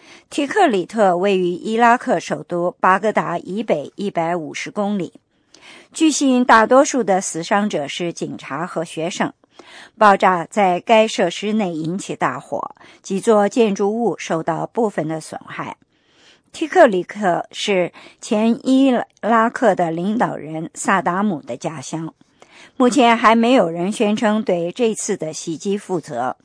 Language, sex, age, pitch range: English, male, 50-69, 175-235 Hz